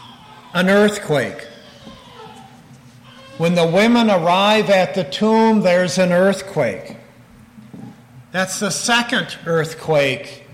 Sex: male